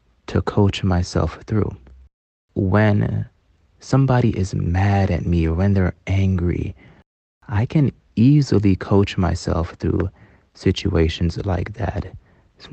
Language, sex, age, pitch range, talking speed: English, male, 20-39, 90-110 Hz, 115 wpm